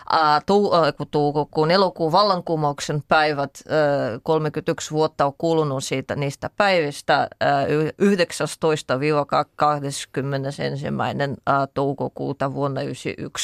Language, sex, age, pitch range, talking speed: Finnish, female, 30-49, 155-205 Hz, 95 wpm